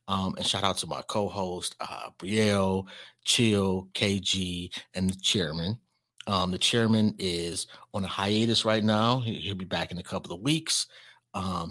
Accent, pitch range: American, 90-110 Hz